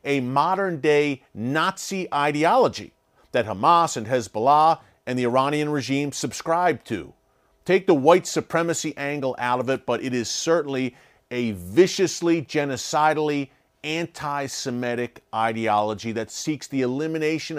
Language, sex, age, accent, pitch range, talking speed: English, male, 40-59, American, 125-165 Hz, 125 wpm